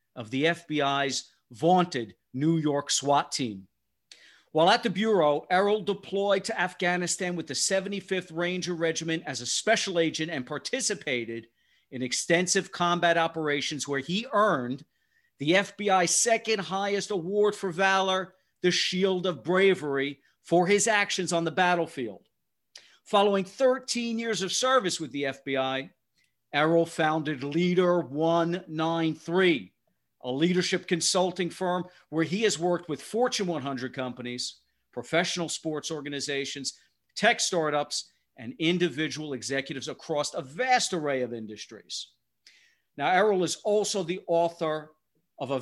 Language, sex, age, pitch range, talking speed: English, male, 50-69, 145-195 Hz, 130 wpm